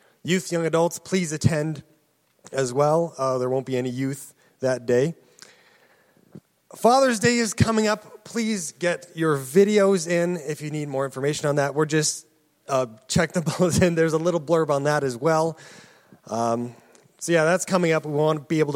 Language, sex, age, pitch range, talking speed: English, male, 30-49, 135-180 Hz, 185 wpm